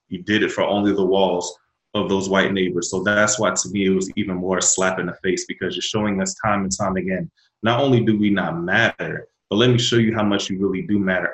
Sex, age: male, 20-39